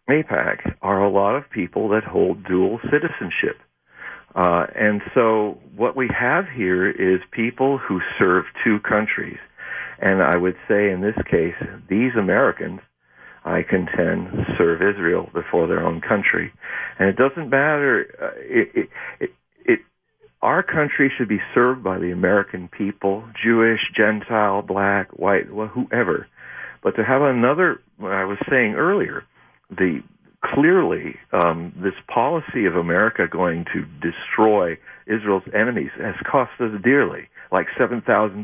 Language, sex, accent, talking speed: English, male, American, 140 wpm